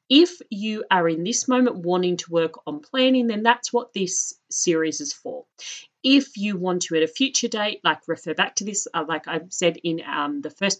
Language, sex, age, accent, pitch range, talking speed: English, female, 30-49, Australian, 160-235 Hz, 215 wpm